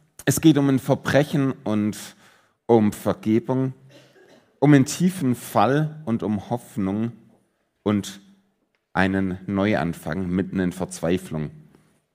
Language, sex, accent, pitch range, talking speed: German, male, German, 95-130 Hz, 105 wpm